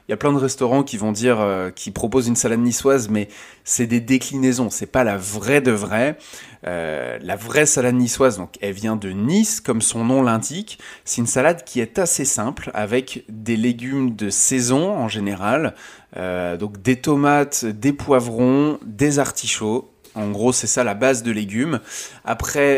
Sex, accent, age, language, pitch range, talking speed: male, French, 20-39, Czech, 110-135 Hz, 185 wpm